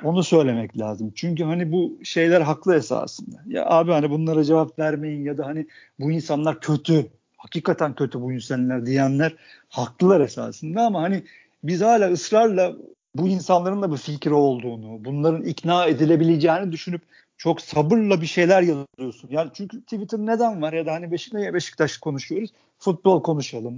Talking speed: 150 wpm